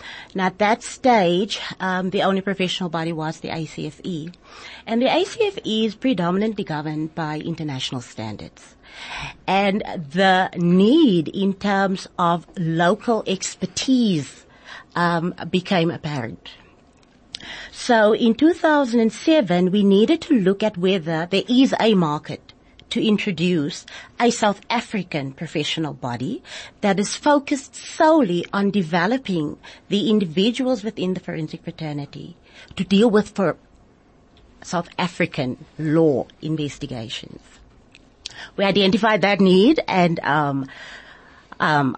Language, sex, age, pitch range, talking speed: English, female, 30-49, 155-205 Hz, 110 wpm